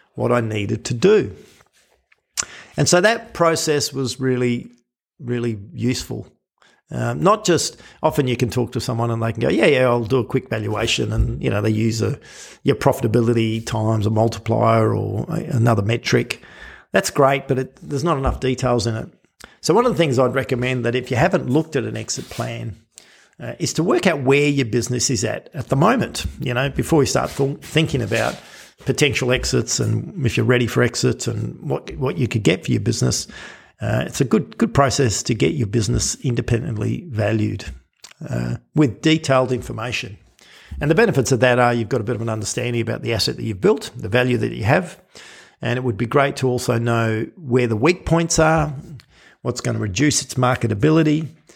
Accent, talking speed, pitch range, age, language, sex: Australian, 200 wpm, 115-140 Hz, 50-69, English, male